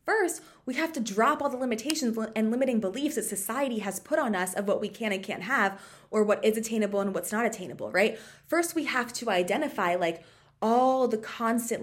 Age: 20-39